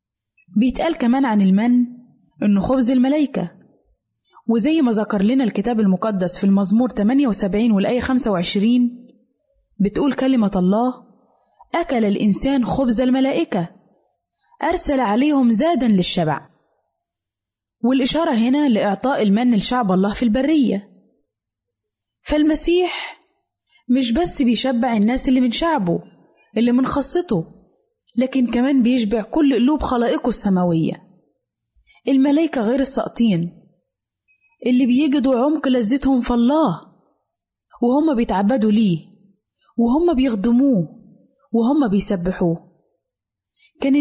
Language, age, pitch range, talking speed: Arabic, 20-39, 195-265 Hz, 100 wpm